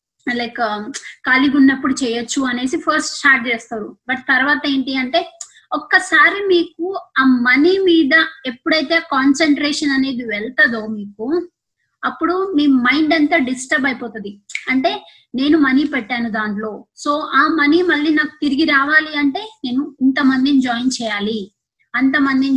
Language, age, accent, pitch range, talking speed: Telugu, 20-39, native, 250-315 Hz, 120 wpm